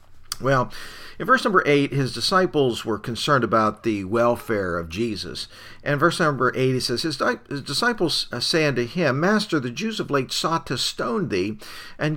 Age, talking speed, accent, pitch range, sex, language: 50-69, 175 wpm, American, 115-145 Hz, male, English